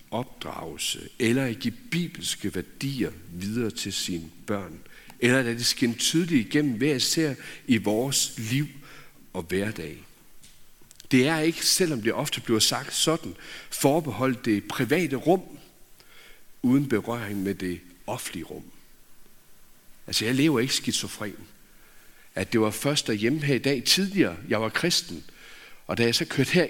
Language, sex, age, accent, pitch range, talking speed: Danish, male, 60-79, native, 95-135 Hz, 150 wpm